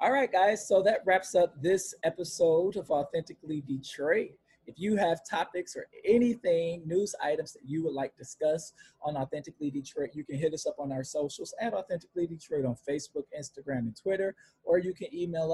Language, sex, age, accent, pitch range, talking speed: English, male, 20-39, American, 130-175 Hz, 190 wpm